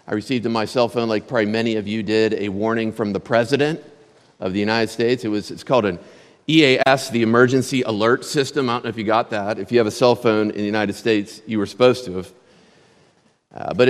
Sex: male